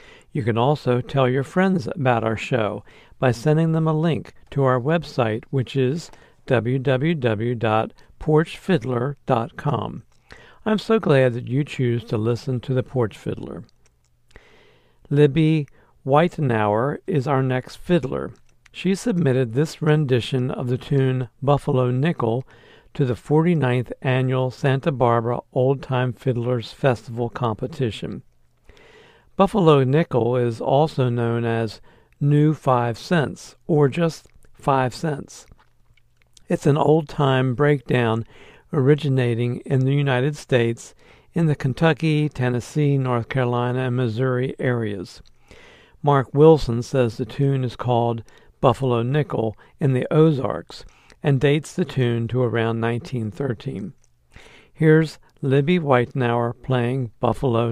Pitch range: 120-145 Hz